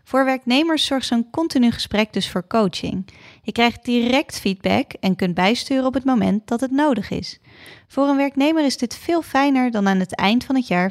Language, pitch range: Dutch, 190-270 Hz